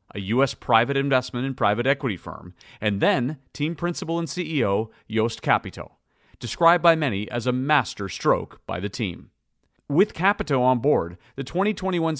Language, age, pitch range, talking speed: English, 40-59, 110-150 Hz, 155 wpm